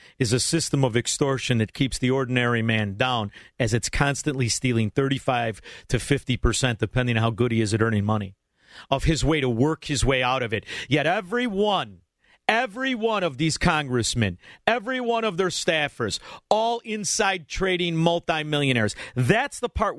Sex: male